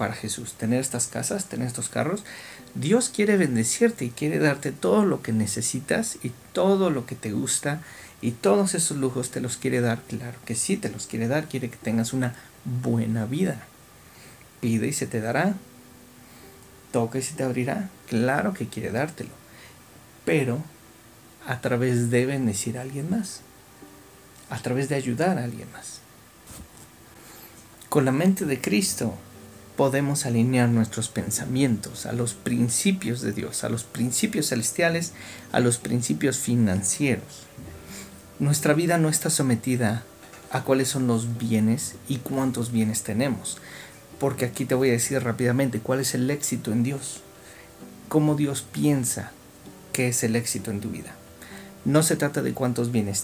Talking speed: 155 wpm